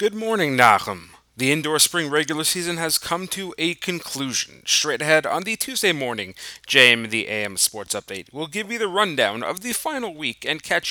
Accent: American